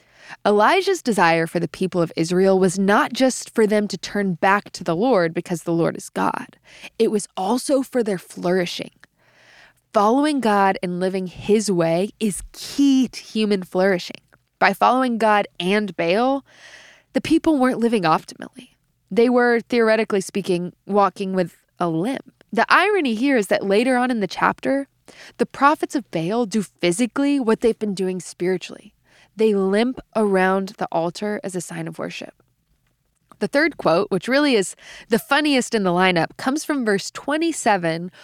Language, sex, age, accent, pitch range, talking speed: English, female, 20-39, American, 185-250 Hz, 165 wpm